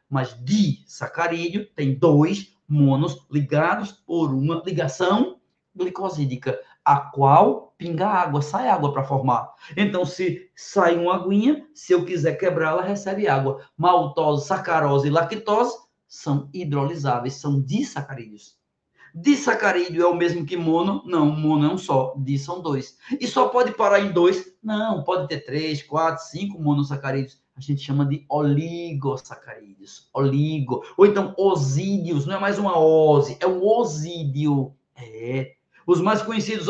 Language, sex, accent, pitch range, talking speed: Portuguese, male, Brazilian, 145-190 Hz, 140 wpm